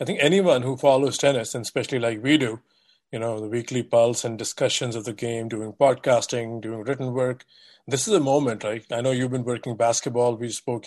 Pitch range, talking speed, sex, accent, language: 115-135 Hz, 215 wpm, male, Indian, English